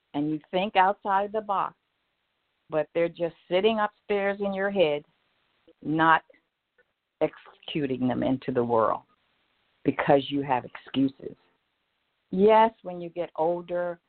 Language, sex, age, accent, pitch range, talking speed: English, female, 50-69, American, 160-195 Hz, 125 wpm